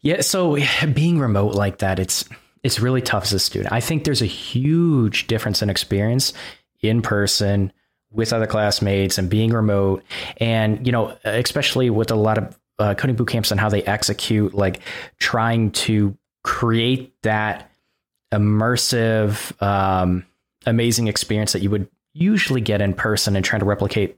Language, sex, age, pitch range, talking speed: English, male, 20-39, 100-125 Hz, 160 wpm